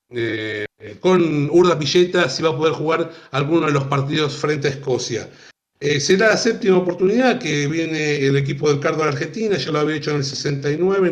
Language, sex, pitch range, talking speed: Spanish, male, 145-185 Hz, 200 wpm